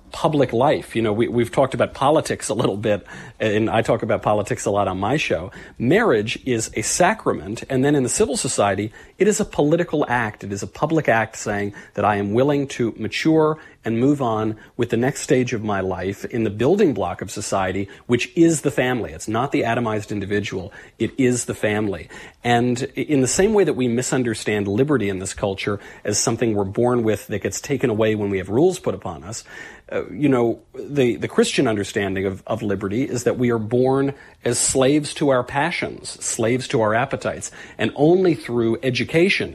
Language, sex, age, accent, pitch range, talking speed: English, male, 40-59, American, 105-135 Hz, 205 wpm